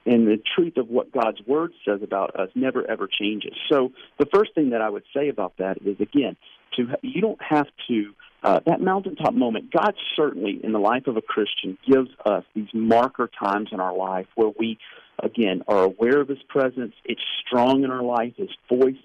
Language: English